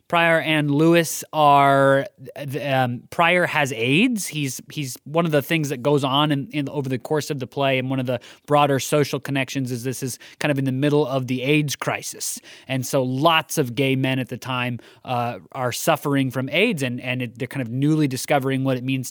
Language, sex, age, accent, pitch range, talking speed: English, male, 20-39, American, 125-150 Hz, 215 wpm